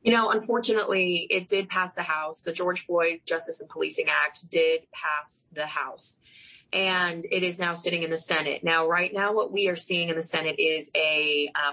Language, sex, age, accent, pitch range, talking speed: English, female, 20-39, American, 160-195 Hz, 205 wpm